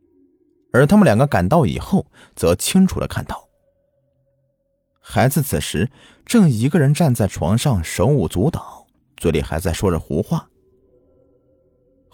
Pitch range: 95-140 Hz